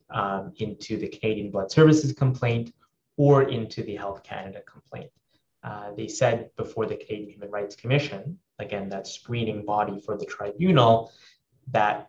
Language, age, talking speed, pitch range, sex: English, 20-39, 150 wpm, 105-130 Hz, male